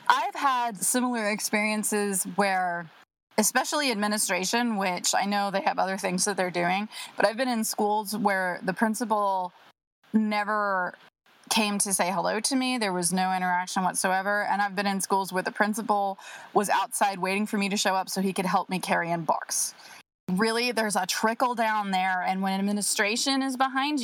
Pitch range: 190-235 Hz